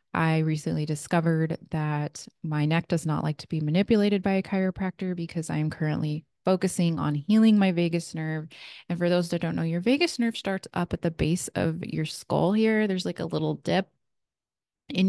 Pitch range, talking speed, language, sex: 165-200 Hz, 190 wpm, English, female